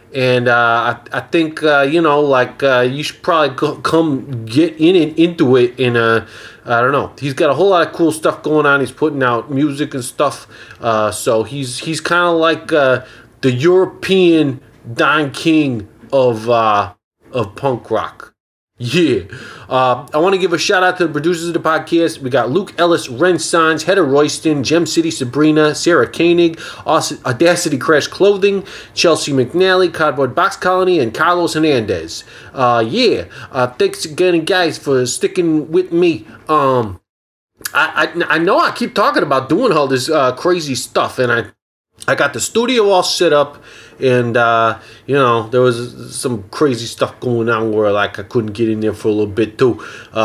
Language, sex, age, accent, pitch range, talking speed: English, male, 20-39, American, 120-165 Hz, 185 wpm